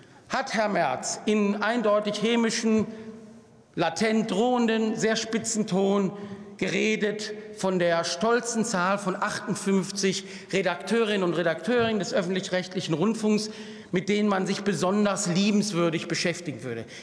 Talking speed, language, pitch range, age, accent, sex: 115 wpm, German, 190-225 Hz, 50-69, German, male